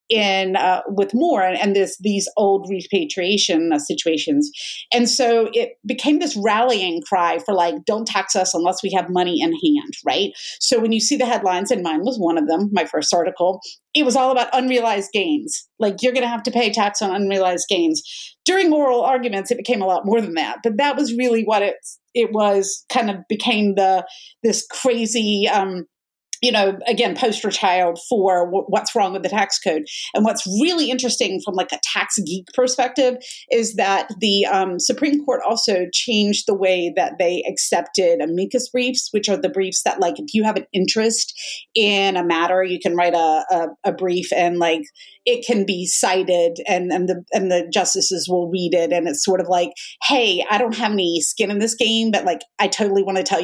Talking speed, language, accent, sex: 205 wpm, English, American, female